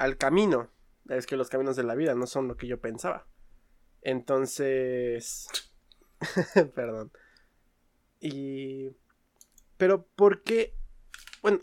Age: 20-39